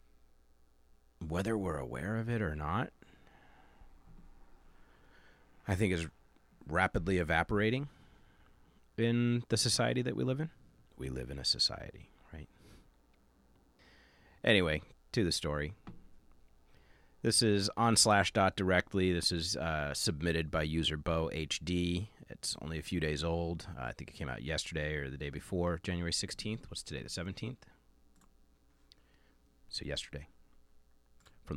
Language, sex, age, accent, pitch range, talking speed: English, male, 40-59, American, 70-100 Hz, 125 wpm